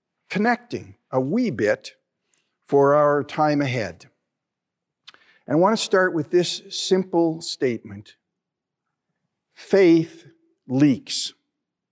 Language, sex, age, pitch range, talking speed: English, male, 50-69, 130-175 Hz, 95 wpm